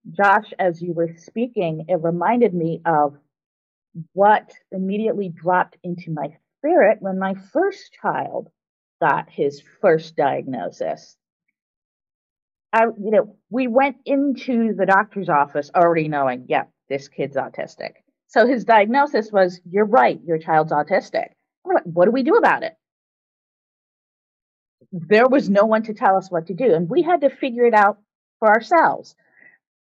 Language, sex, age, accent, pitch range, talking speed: English, female, 40-59, American, 175-260 Hz, 150 wpm